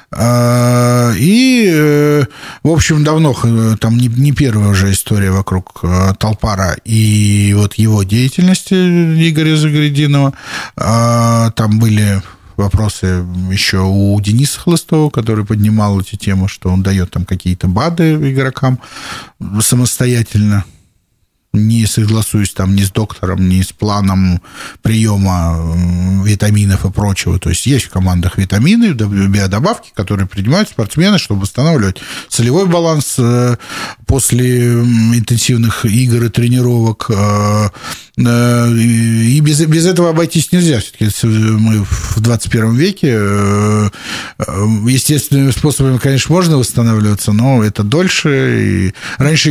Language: Russian